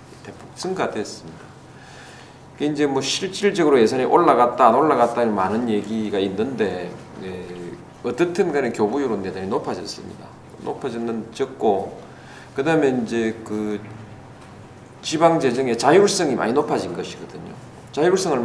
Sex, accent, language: male, native, Korean